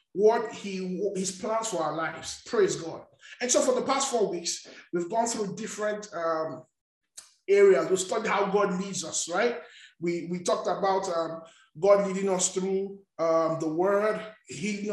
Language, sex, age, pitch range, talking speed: English, male, 20-39, 180-225 Hz, 170 wpm